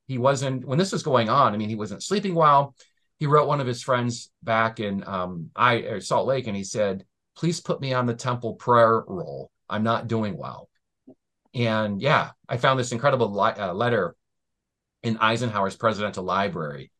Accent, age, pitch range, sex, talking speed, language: American, 40-59, 100-130 Hz, male, 190 wpm, English